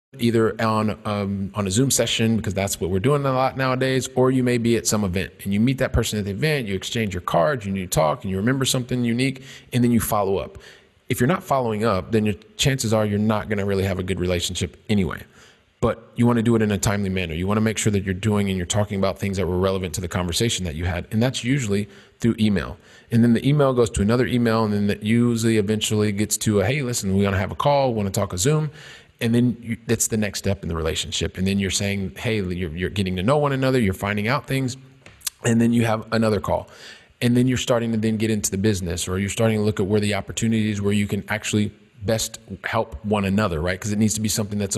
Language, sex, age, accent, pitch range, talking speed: English, male, 30-49, American, 100-120 Hz, 260 wpm